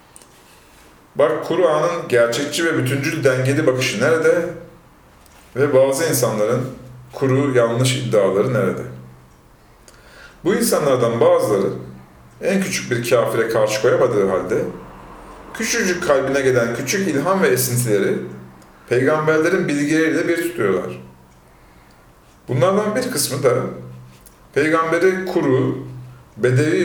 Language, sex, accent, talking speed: Turkish, male, native, 95 wpm